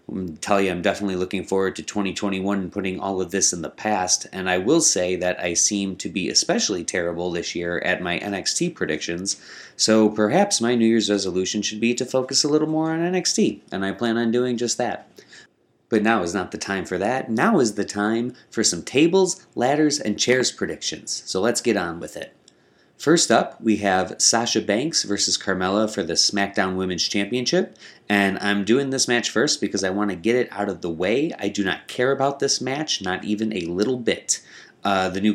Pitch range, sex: 90-110 Hz, male